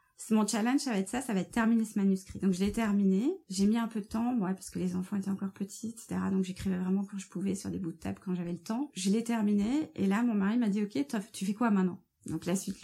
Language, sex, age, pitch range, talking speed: French, female, 20-39, 185-215 Hz, 315 wpm